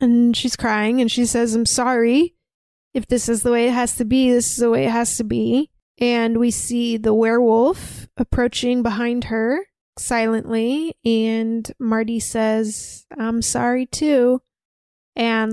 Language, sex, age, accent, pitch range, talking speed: English, female, 20-39, American, 220-240 Hz, 160 wpm